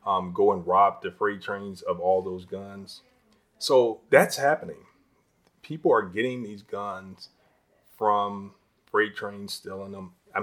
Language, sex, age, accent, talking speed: English, male, 30-49, American, 145 wpm